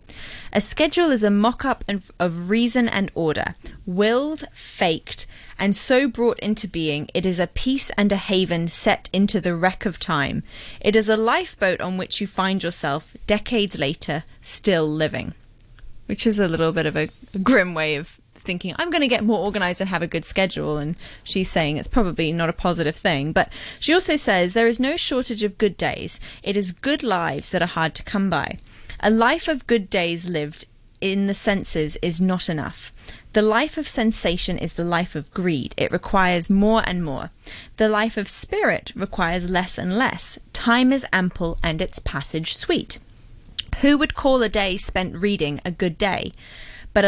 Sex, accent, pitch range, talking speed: female, British, 170-230 Hz, 185 wpm